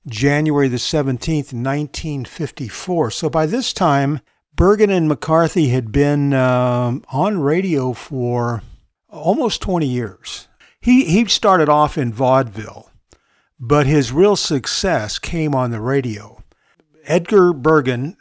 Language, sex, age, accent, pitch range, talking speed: English, male, 50-69, American, 125-155 Hz, 120 wpm